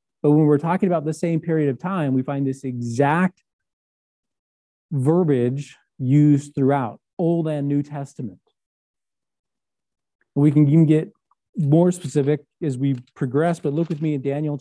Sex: male